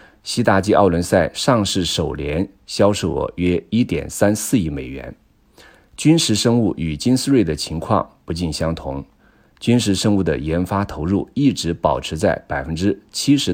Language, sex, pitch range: Chinese, male, 80-105 Hz